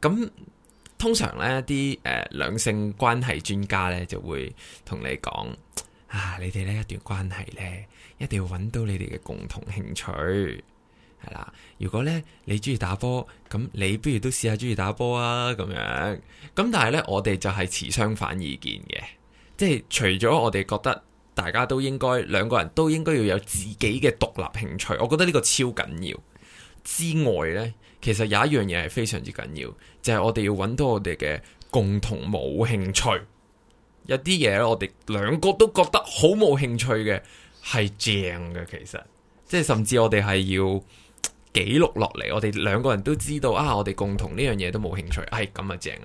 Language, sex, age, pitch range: Chinese, male, 20-39, 95-125 Hz